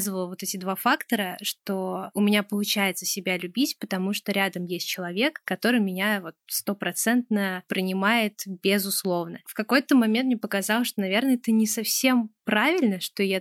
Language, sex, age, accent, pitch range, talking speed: Russian, female, 20-39, native, 190-220 Hz, 155 wpm